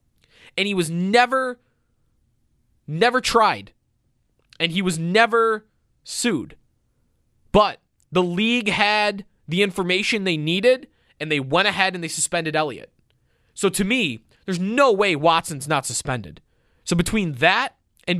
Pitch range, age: 140-205 Hz, 20-39